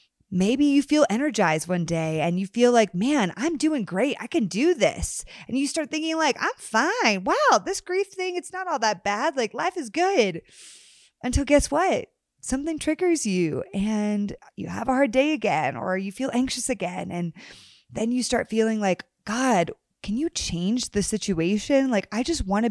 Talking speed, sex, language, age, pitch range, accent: 195 wpm, female, English, 20-39, 180-260 Hz, American